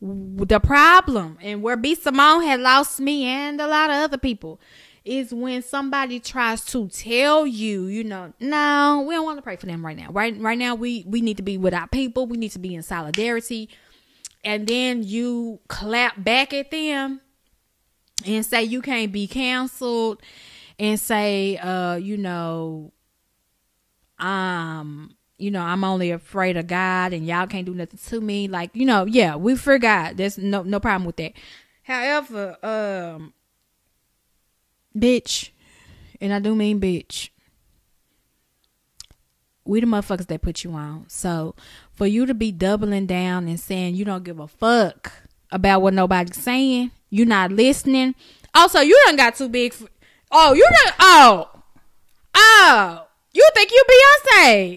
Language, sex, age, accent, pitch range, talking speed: English, female, 10-29, American, 185-255 Hz, 165 wpm